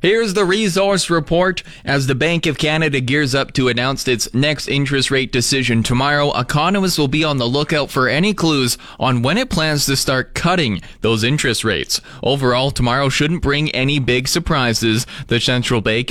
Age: 20-39